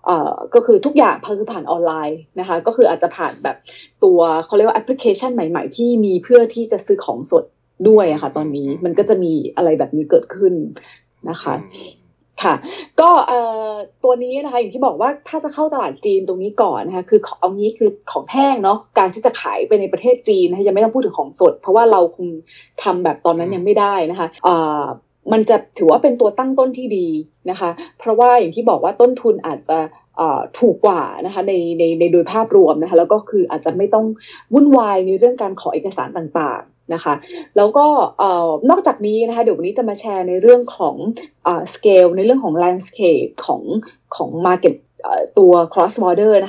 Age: 20-39